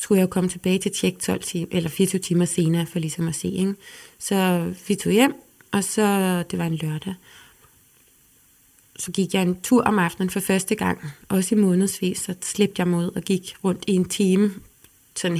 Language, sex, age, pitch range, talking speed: Danish, female, 20-39, 170-195 Hz, 200 wpm